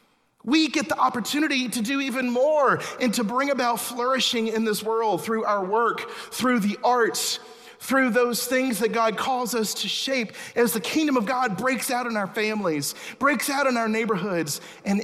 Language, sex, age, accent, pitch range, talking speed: English, male, 40-59, American, 185-245 Hz, 190 wpm